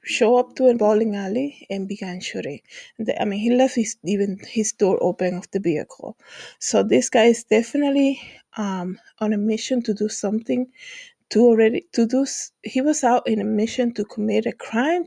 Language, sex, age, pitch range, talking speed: English, female, 20-39, 200-245 Hz, 190 wpm